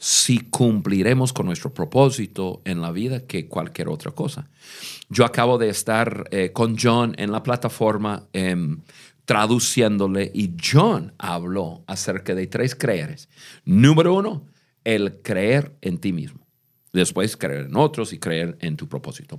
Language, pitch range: Spanish, 110-150 Hz